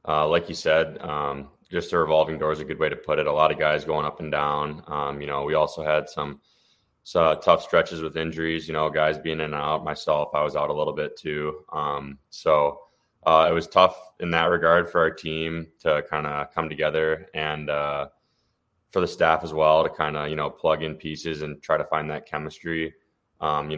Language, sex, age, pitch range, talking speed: English, male, 20-39, 75-80 Hz, 230 wpm